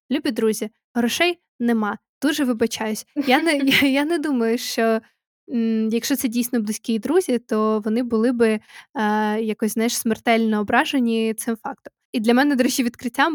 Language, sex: Ukrainian, female